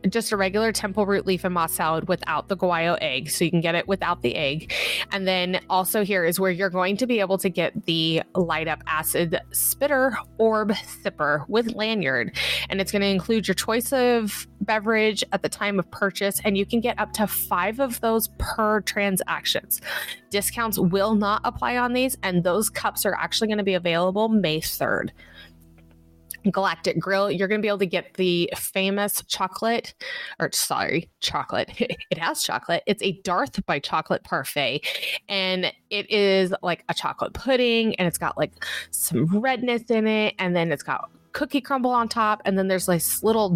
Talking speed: 185 wpm